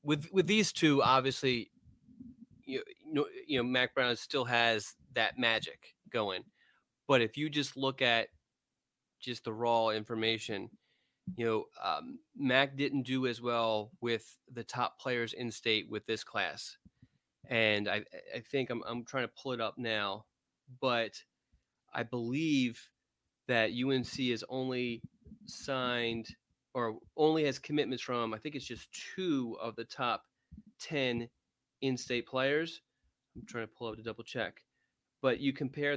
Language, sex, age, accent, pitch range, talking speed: English, male, 30-49, American, 115-145 Hz, 150 wpm